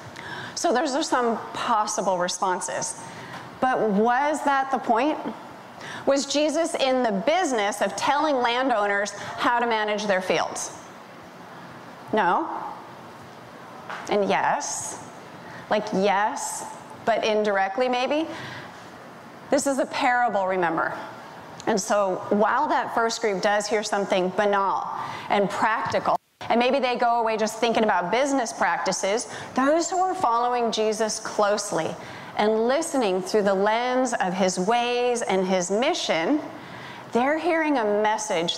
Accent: American